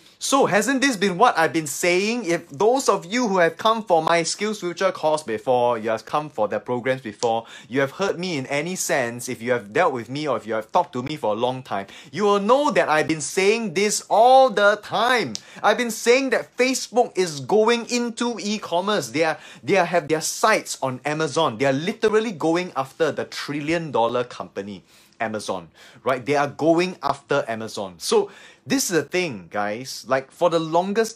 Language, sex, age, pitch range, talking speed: English, male, 20-39, 130-180 Hz, 200 wpm